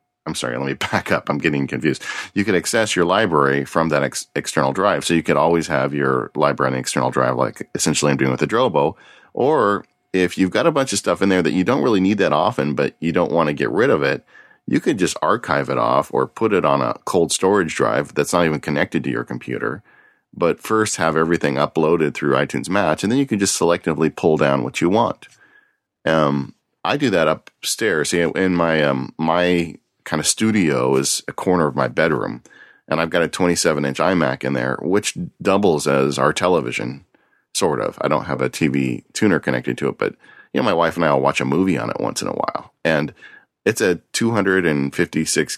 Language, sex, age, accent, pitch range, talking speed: English, male, 40-59, American, 70-90 Hz, 220 wpm